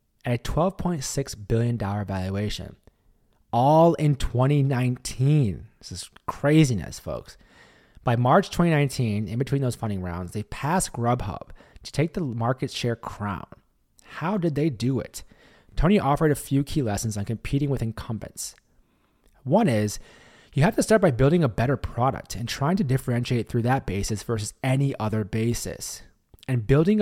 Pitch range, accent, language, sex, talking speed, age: 110-150 Hz, American, English, male, 150 wpm, 30-49